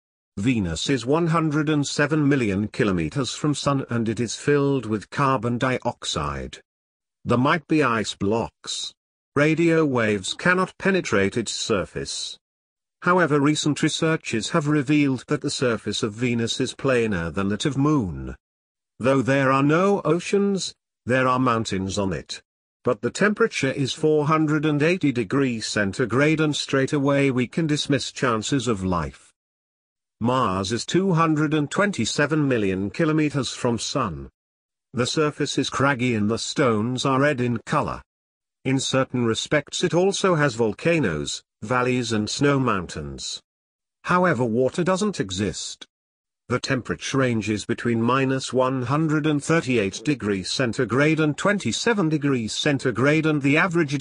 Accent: British